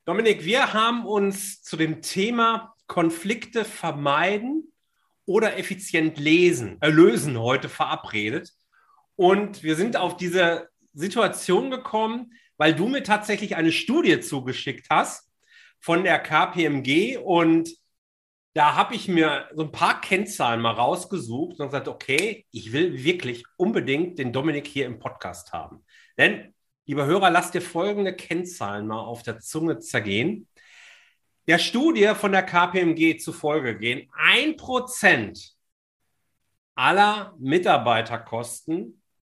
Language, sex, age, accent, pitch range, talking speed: German, male, 40-59, German, 140-215 Hz, 120 wpm